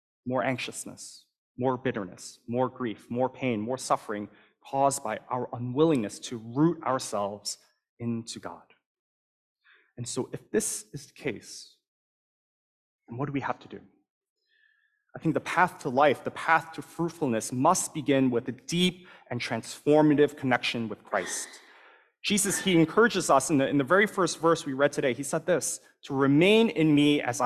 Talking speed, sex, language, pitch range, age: 165 wpm, male, English, 125-165 Hz, 30-49